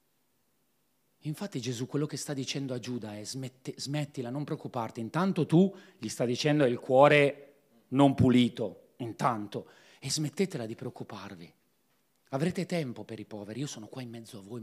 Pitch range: 125-170 Hz